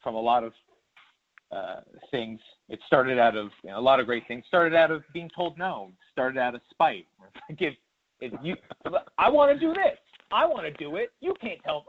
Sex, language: male, English